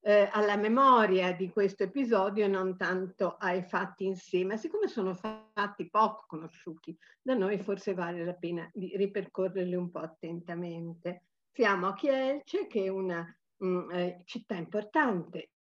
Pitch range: 175-220 Hz